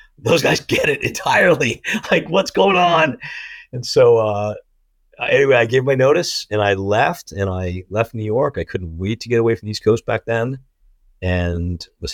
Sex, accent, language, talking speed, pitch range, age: male, American, English, 195 wpm, 85-105 Hz, 50-69